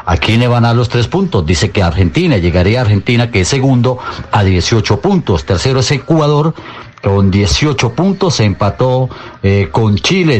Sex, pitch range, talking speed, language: male, 100-135 Hz, 175 wpm, Spanish